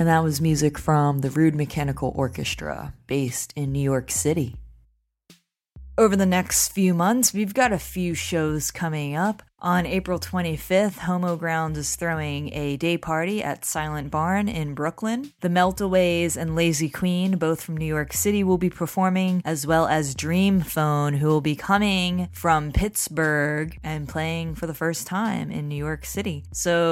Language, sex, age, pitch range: English, female, 20-39, 155-185 Hz